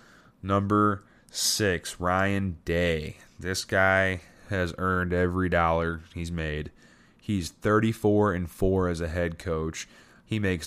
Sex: male